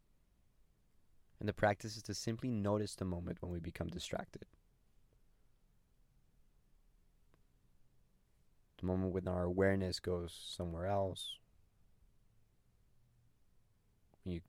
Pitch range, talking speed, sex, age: 80-100 Hz, 90 wpm, male, 20-39